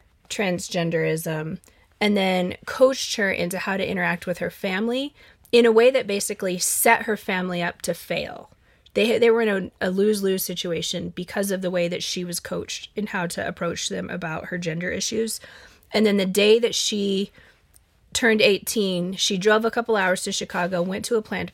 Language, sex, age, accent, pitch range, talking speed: English, female, 20-39, American, 175-215 Hz, 185 wpm